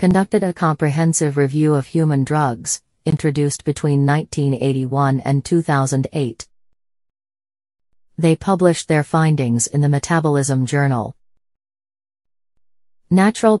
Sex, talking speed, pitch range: female, 95 wpm, 130-160 Hz